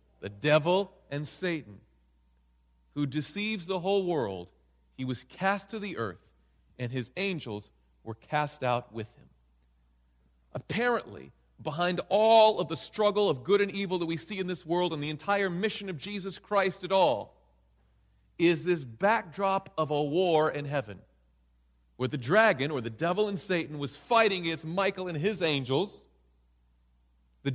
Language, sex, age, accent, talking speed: English, male, 40-59, American, 155 wpm